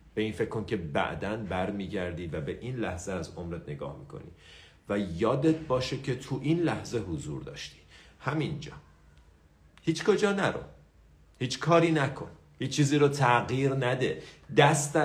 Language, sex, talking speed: Persian, male, 150 wpm